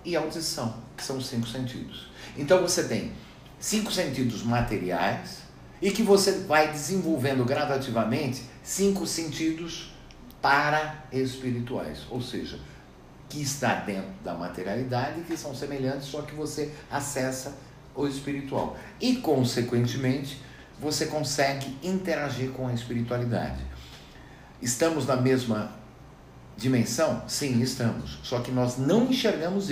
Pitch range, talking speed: 120-160 Hz, 115 wpm